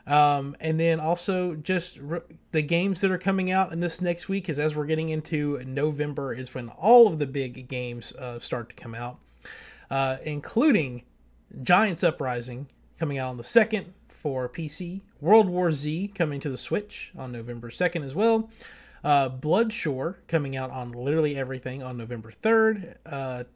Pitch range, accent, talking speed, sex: 135-185 Hz, American, 175 wpm, male